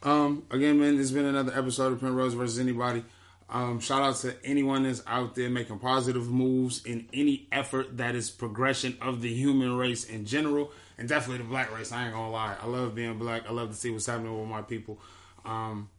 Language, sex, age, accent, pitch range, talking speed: English, male, 20-39, American, 120-135 Hz, 215 wpm